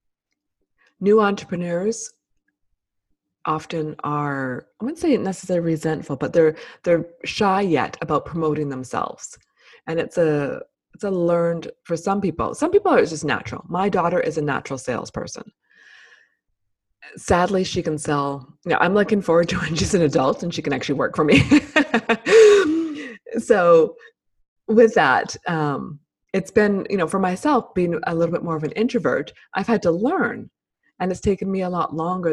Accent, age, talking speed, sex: American, 20-39, 160 wpm, female